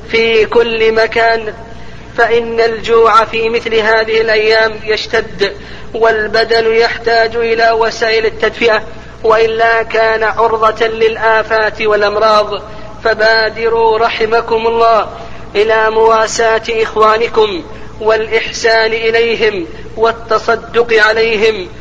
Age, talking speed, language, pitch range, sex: 40-59, 85 wpm, Arabic, 220-225 Hz, female